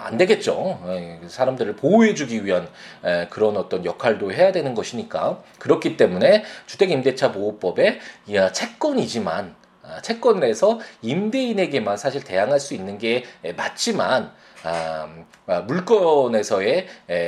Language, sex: Korean, male